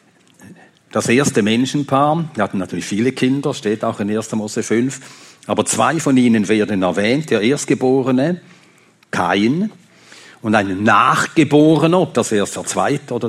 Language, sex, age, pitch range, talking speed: German, male, 60-79, 110-150 Hz, 145 wpm